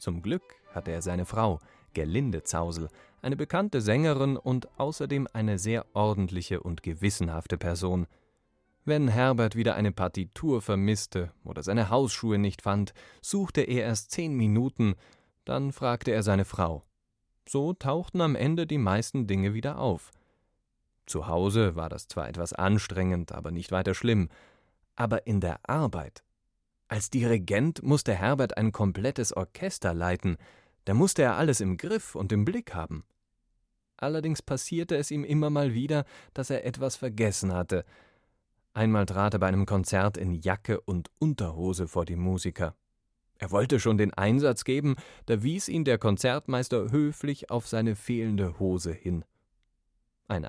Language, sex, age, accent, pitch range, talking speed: German, male, 30-49, German, 95-130 Hz, 150 wpm